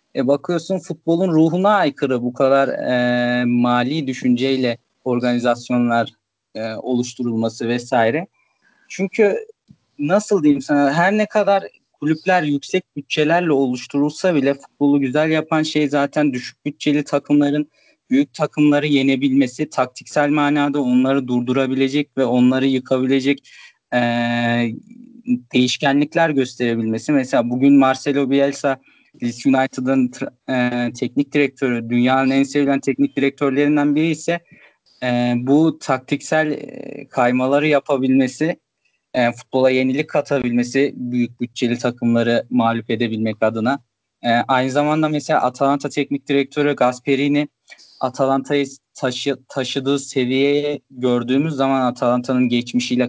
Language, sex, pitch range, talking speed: Turkish, male, 125-145 Hz, 105 wpm